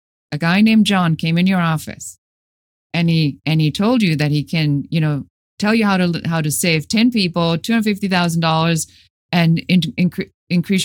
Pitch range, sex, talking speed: 145-205 Hz, female, 195 wpm